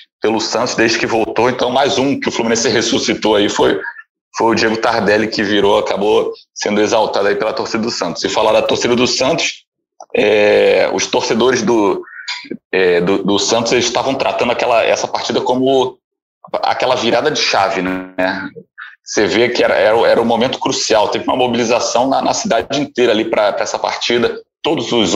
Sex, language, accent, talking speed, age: male, Portuguese, Brazilian, 180 wpm, 30-49